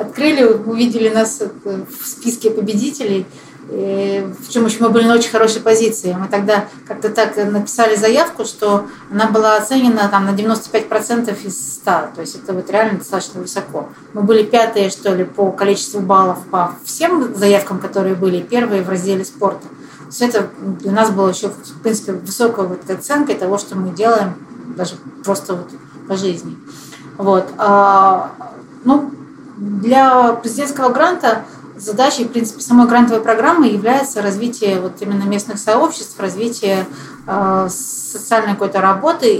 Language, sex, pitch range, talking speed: Russian, female, 195-230 Hz, 145 wpm